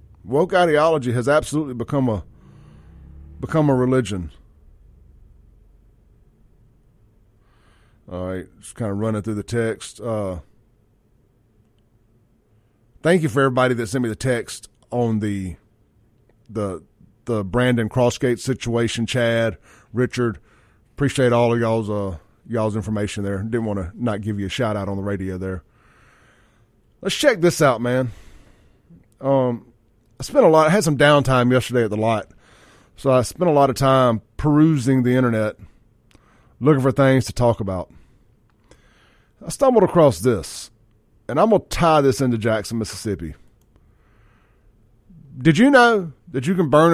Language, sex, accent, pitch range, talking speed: English, male, American, 105-135 Hz, 145 wpm